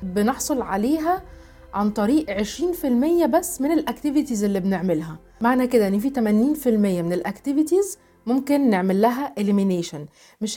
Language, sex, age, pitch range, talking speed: Arabic, female, 30-49, 205-280 Hz, 130 wpm